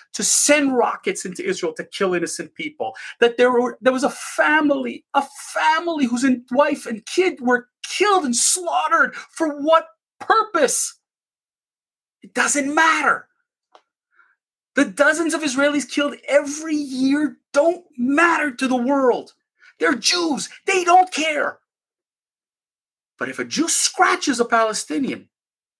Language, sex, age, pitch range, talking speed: English, male, 40-59, 225-300 Hz, 130 wpm